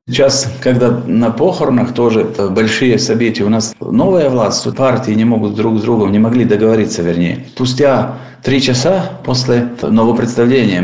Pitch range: 95-125 Hz